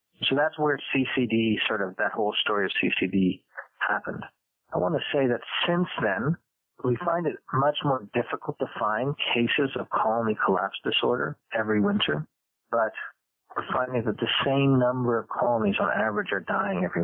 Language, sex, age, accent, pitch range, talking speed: English, male, 40-59, American, 110-140 Hz, 170 wpm